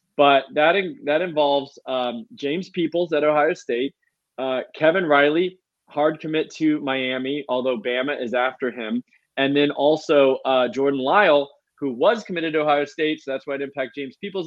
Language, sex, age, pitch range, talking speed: English, male, 20-39, 120-155 Hz, 175 wpm